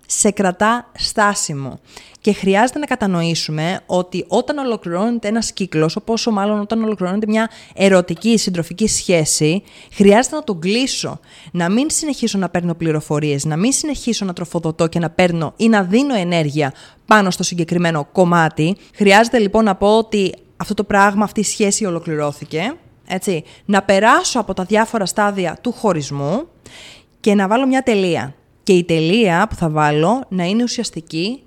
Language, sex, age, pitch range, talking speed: Greek, female, 20-39, 165-225 Hz, 155 wpm